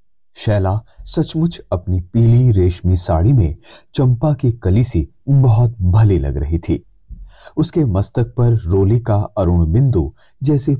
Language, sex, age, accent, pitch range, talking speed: Hindi, male, 30-49, native, 90-130 Hz, 130 wpm